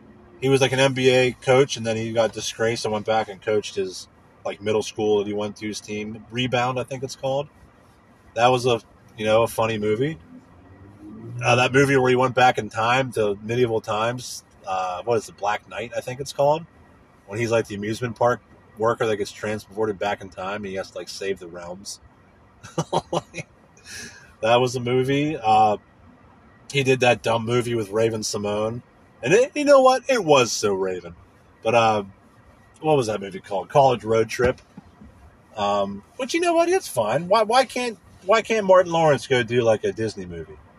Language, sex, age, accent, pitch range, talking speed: English, male, 30-49, American, 105-150 Hz, 195 wpm